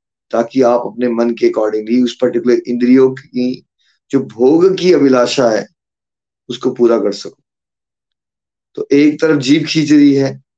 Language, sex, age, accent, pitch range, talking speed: Hindi, male, 20-39, native, 120-140 Hz, 125 wpm